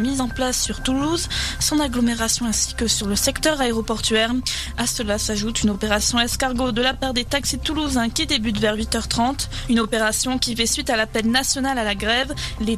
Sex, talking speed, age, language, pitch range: female, 195 wpm, 20-39, French, 225-270 Hz